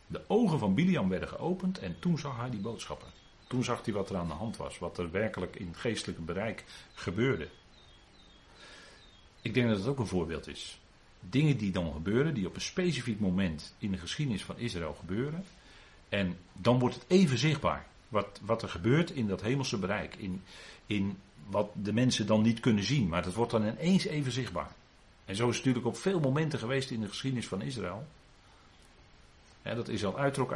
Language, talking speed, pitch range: Dutch, 200 wpm, 95-145 Hz